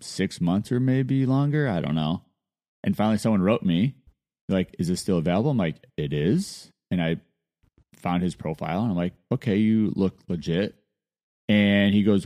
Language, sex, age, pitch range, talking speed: English, male, 30-49, 85-135 Hz, 180 wpm